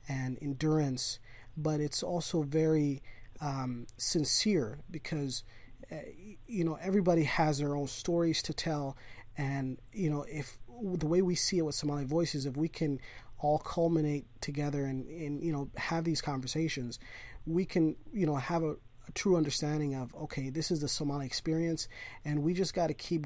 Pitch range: 135-170 Hz